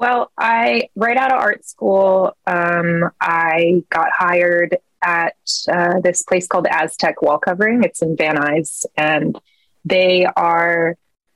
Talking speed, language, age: 135 wpm, English, 20-39